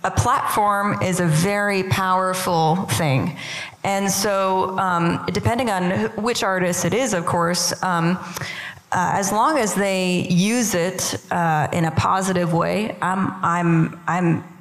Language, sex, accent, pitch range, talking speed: English, female, American, 170-195 Hz, 145 wpm